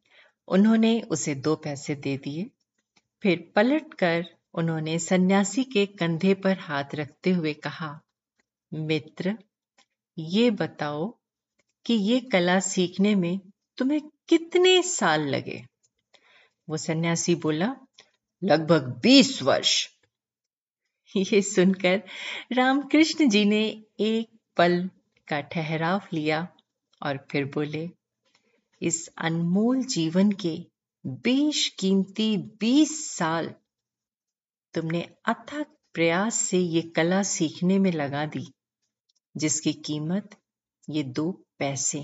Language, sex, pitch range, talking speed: Hindi, female, 160-220 Hz, 105 wpm